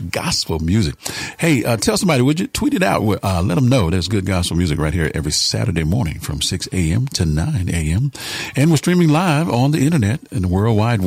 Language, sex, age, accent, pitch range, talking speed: English, male, 50-69, American, 90-120 Hz, 220 wpm